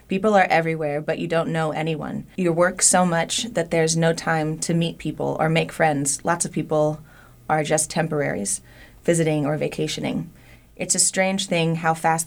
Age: 20-39